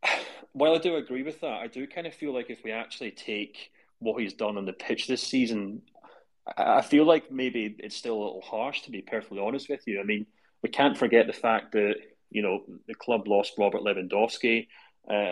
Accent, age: British, 30-49